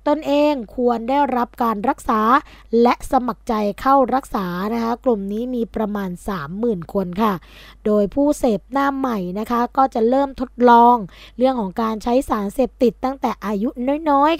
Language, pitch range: Thai, 210-255 Hz